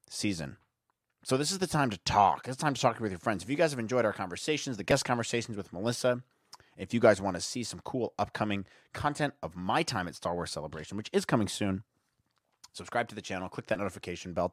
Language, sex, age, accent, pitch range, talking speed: English, male, 30-49, American, 110-155 Hz, 230 wpm